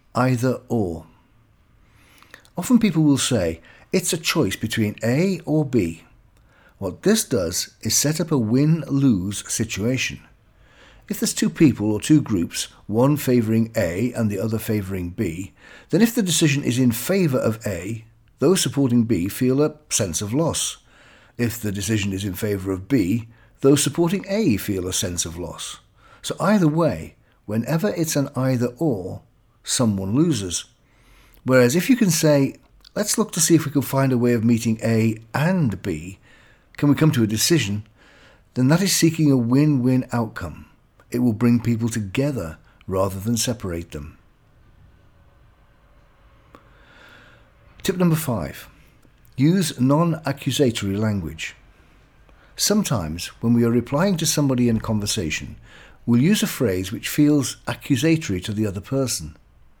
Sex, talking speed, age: male, 150 wpm, 50-69